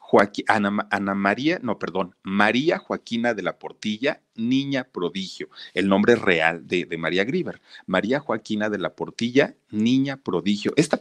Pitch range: 95-130 Hz